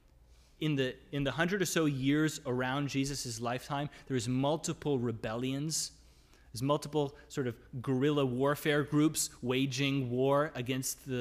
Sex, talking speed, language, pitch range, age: male, 130 wpm, English, 110-155 Hz, 30-49